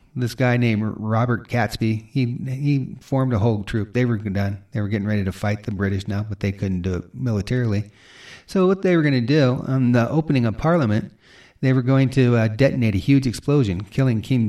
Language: English